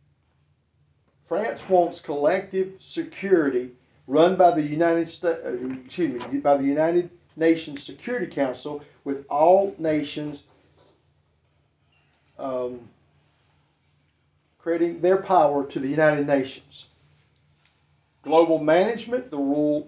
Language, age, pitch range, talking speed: English, 50-69, 130-175 Hz, 90 wpm